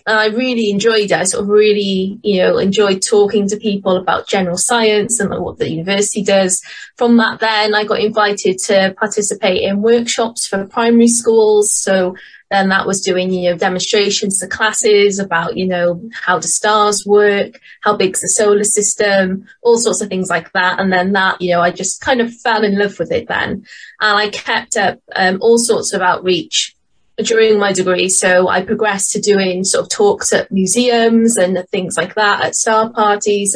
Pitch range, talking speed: 190-225 Hz, 195 wpm